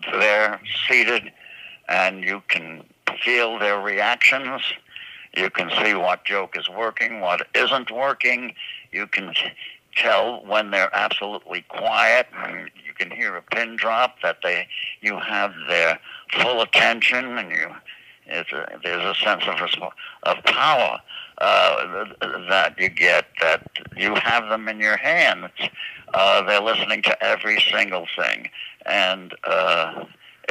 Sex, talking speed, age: male, 140 wpm, 60-79